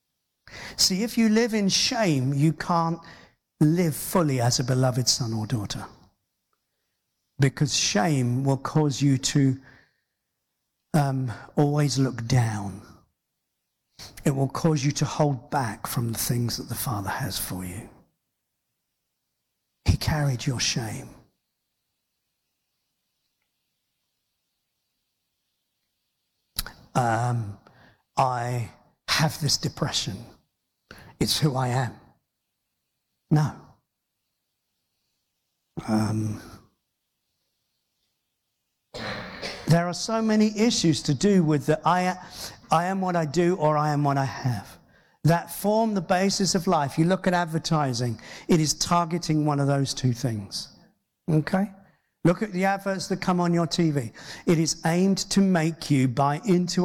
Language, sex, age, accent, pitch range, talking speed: English, male, 50-69, British, 130-175 Hz, 120 wpm